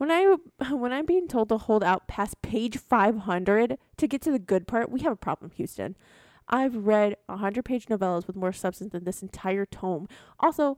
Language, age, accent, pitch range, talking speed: English, 20-39, American, 195-260 Hz, 195 wpm